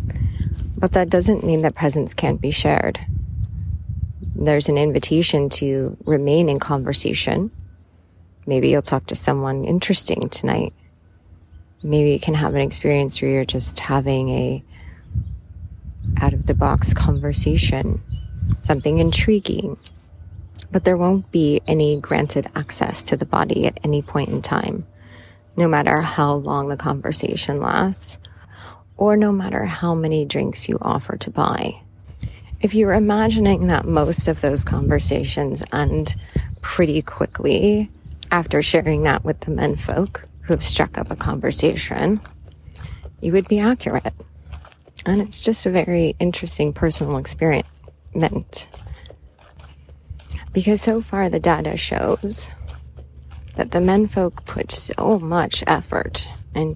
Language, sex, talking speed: English, female, 130 wpm